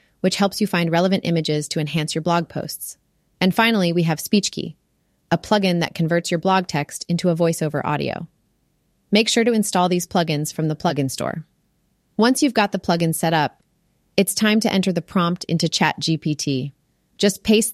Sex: female